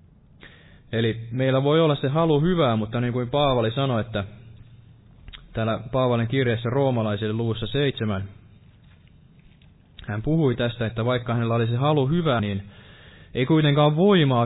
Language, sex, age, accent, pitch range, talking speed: Finnish, male, 20-39, native, 110-135 Hz, 135 wpm